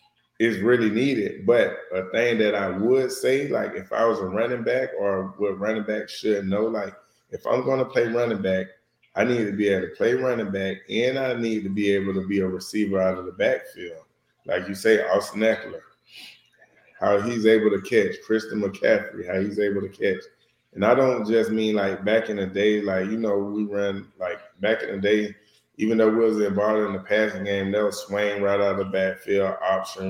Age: 20-39